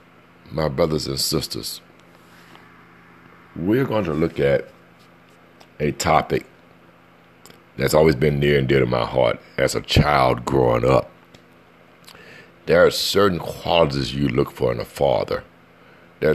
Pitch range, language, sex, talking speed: 75-95 Hz, English, male, 130 wpm